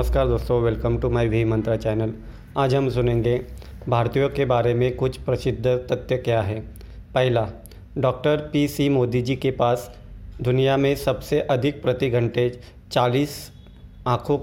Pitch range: 120-140 Hz